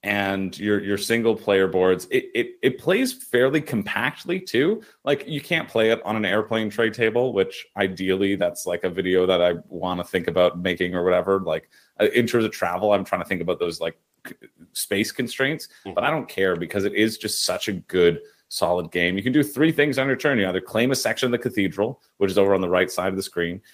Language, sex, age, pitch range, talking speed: English, male, 30-49, 95-125 Hz, 230 wpm